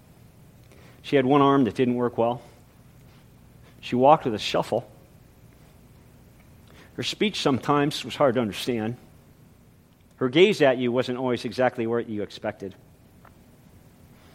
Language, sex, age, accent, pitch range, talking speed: English, male, 50-69, American, 120-155 Hz, 125 wpm